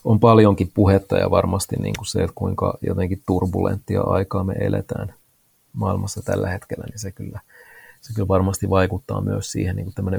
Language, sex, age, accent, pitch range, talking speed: Finnish, male, 30-49, native, 95-115 Hz, 170 wpm